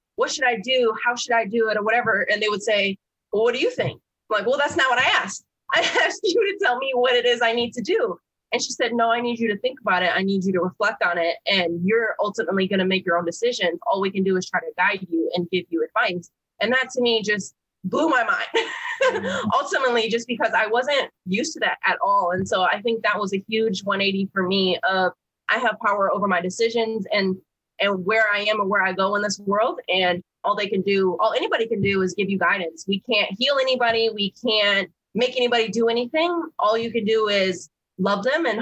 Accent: American